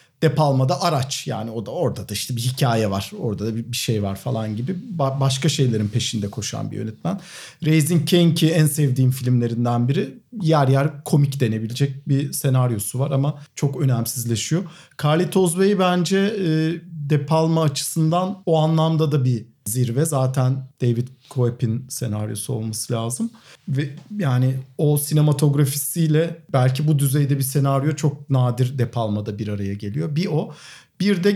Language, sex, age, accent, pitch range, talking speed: Turkish, male, 50-69, native, 125-165 Hz, 150 wpm